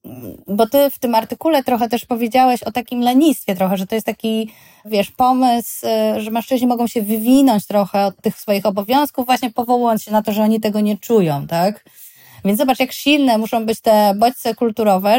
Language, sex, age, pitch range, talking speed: Polish, female, 20-39, 205-245 Hz, 190 wpm